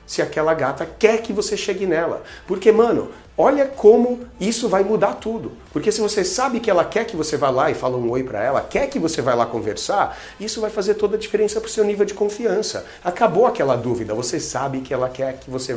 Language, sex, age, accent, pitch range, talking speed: Portuguese, male, 40-59, Brazilian, 125-175 Hz, 230 wpm